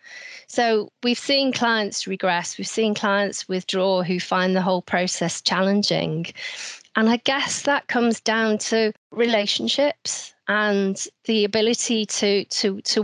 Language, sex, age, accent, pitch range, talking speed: English, female, 40-59, British, 185-220 Hz, 130 wpm